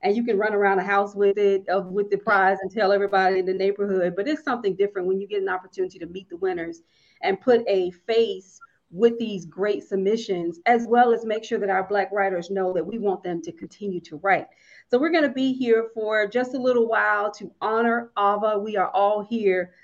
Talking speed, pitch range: 230 wpm, 190-225 Hz